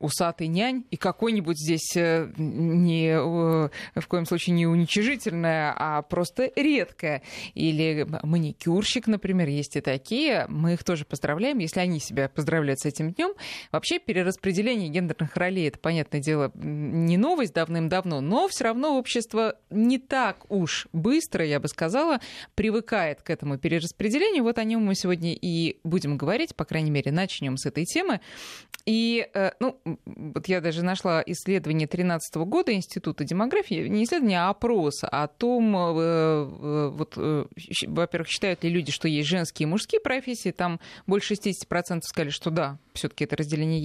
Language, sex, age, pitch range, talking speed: Russian, female, 20-39, 155-215 Hz, 155 wpm